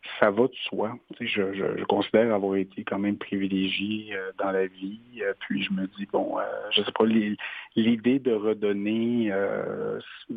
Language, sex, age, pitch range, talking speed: French, male, 50-69, 95-105 Hz, 160 wpm